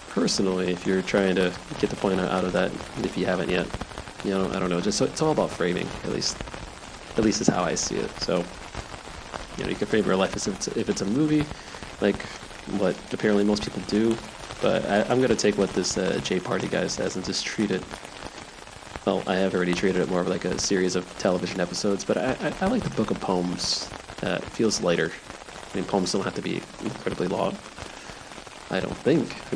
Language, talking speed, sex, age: English, 230 wpm, male, 20-39